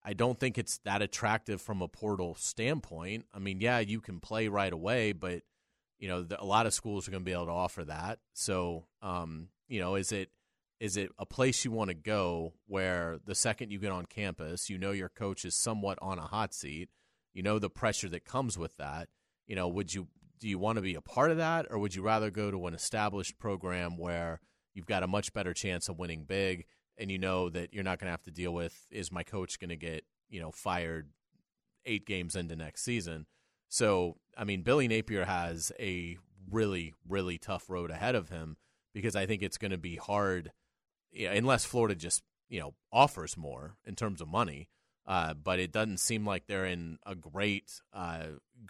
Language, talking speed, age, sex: English, 215 wpm, 30-49, male